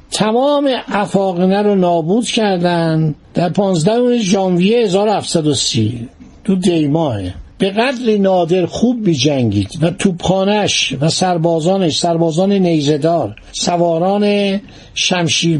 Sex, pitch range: male, 165-215 Hz